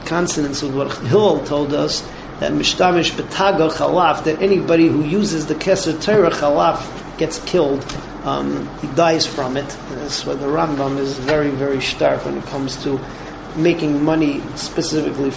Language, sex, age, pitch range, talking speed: English, male, 40-59, 150-185 Hz, 140 wpm